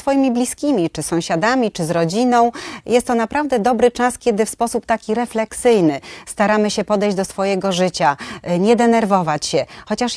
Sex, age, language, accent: female, 30-49, Polish, native